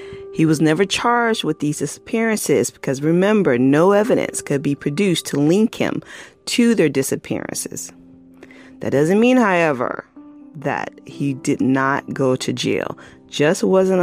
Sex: female